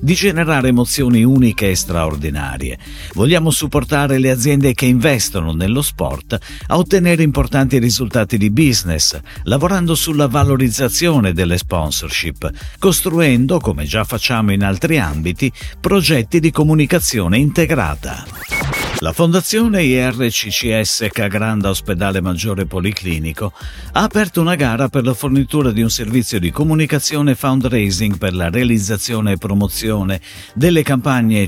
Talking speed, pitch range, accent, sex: 120 wpm, 95-140 Hz, native, male